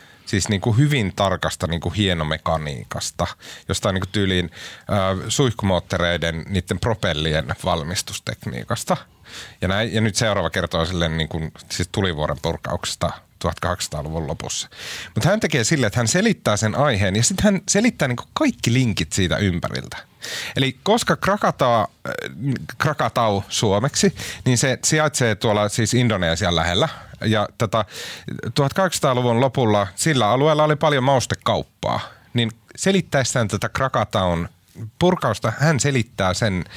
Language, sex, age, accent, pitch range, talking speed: Finnish, male, 30-49, native, 95-130 Hz, 120 wpm